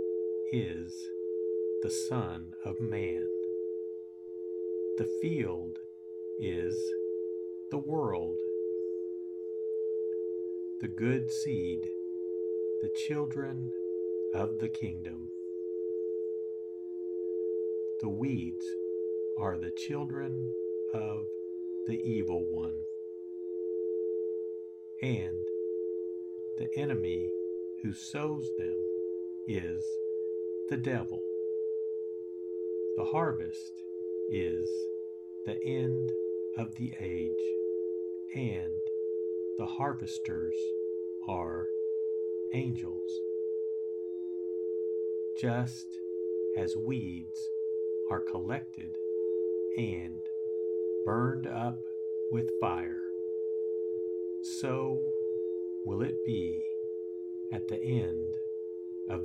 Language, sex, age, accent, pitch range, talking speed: English, male, 50-69, American, 90-110 Hz, 70 wpm